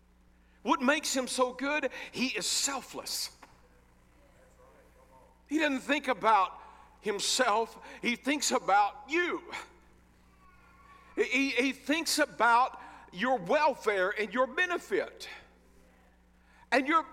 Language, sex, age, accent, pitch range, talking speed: English, male, 50-69, American, 205-275 Hz, 95 wpm